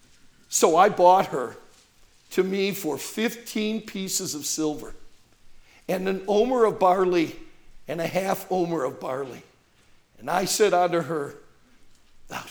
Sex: male